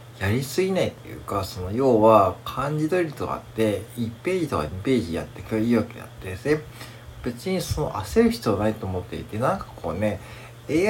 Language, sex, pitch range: Japanese, male, 110-160 Hz